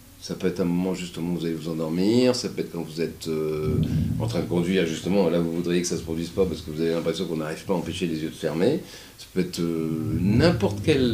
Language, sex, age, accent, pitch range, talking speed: French, male, 40-59, French, 90-125 Hz, 280 wpm